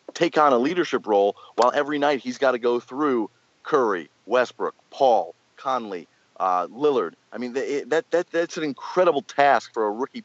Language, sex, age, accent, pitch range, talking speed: English, male, 30-49, American, 115-160 Hz, 175 wpm